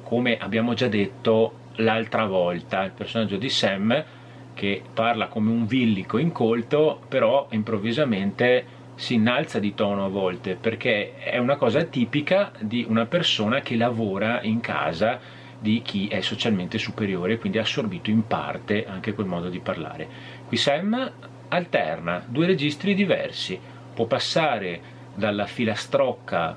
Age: 30-49